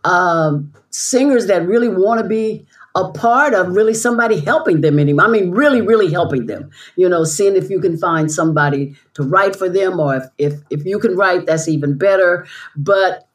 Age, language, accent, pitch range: 60-79, English, American, 175-235 Hz